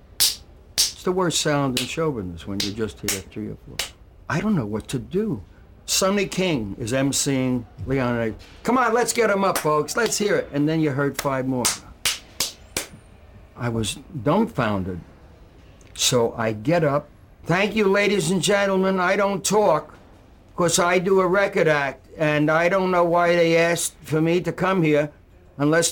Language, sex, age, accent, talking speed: English, male, 60-79, American, 170 wpm